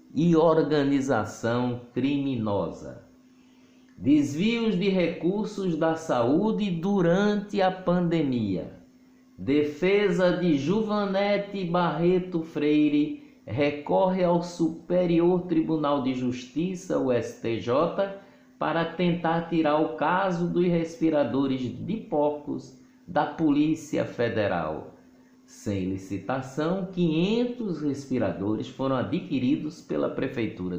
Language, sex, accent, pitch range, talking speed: Portuguese, male, Brazilian, 125-185 Hz, 85 wpm